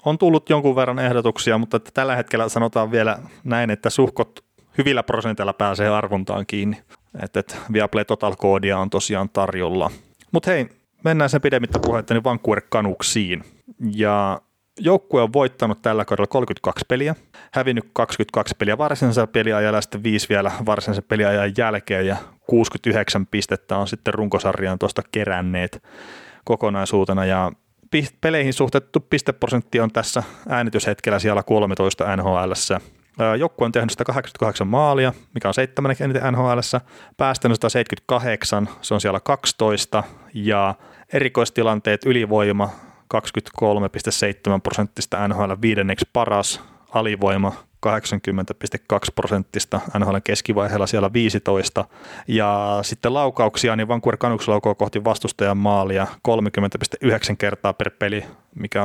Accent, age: native, 30-49